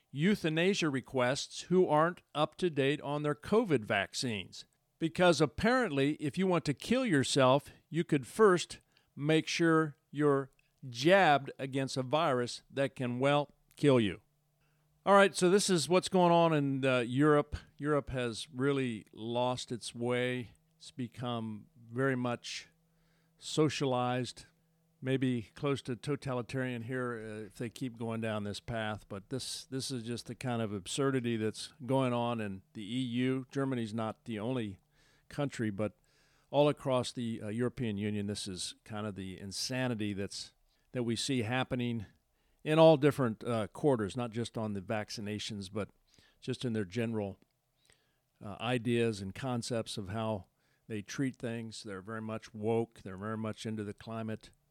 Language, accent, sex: English, American, male